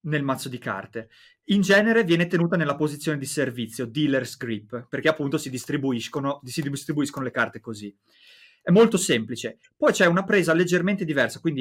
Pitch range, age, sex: 135-195 Hz, 30-49, male